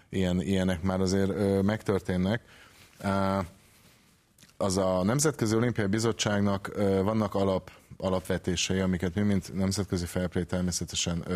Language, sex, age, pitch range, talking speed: Hungarian, male, 30-49, 90-105 Hz, 100 wpm